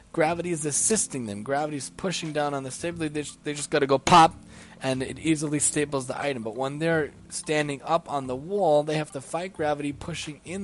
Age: 20-39